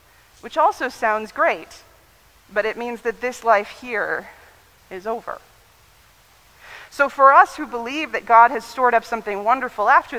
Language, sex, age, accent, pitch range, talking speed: English, female, 30-49, American, 210-275 Hz, 155 wpm